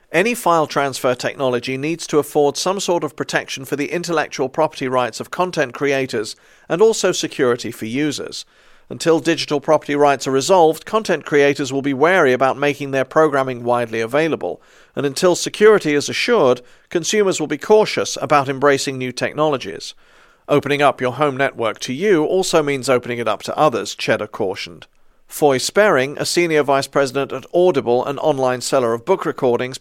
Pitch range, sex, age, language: 135-165 Hz, male, 50-69, English